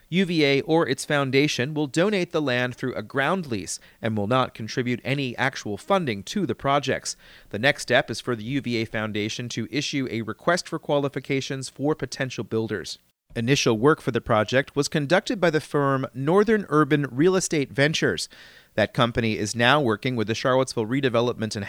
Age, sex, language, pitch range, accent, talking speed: 30-49, male, English, 120-155 Hz, American, 175 wpm